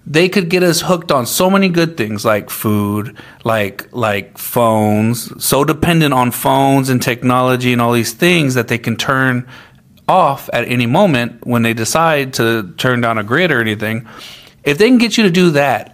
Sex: male